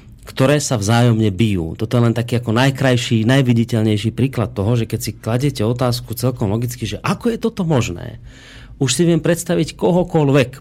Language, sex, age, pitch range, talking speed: Slovak, male, 30-49, 110-140 Hz, 170 wpm